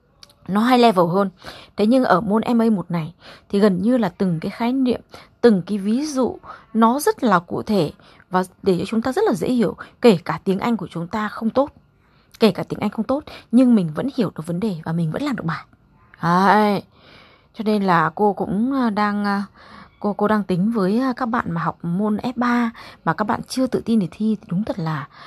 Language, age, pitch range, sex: Vietnamese, 20-39, 180-225 Hz, female